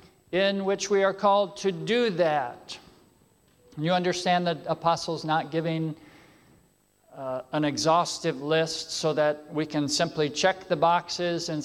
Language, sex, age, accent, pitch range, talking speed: English, male, 50-69, American, 150-205 Hz, 140 wpm